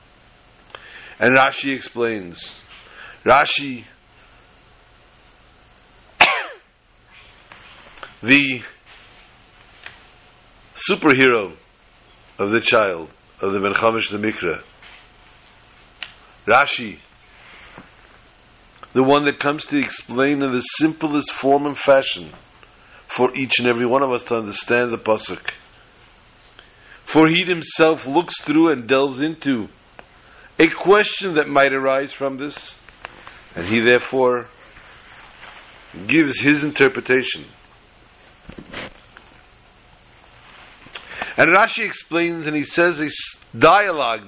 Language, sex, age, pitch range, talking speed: English, male, 50-69, 120-155 Hz, 90 wpm